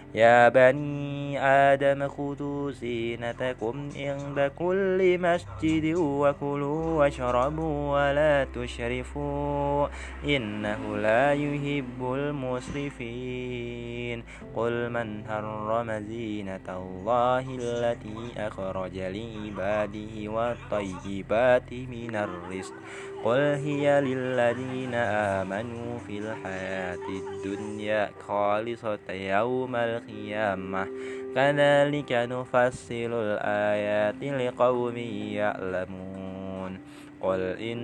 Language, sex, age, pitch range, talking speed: Indonesian, male, 20-39, 105-140 Hz, 70 wpm